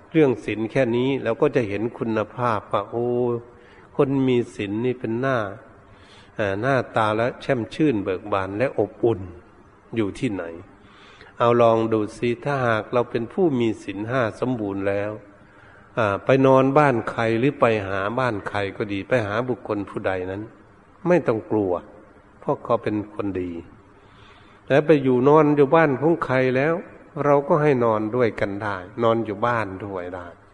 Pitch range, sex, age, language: 100-130 Hz, male, 60-79, Thai